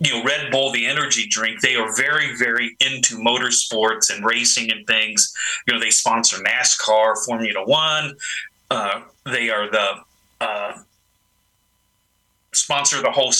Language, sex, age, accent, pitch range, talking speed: English, male, 30-49, American, 110-140 Hz, 145 wpm